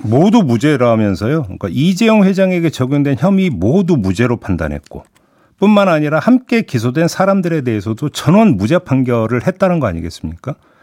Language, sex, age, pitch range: Korean, male, 50-69, 125-195 Hz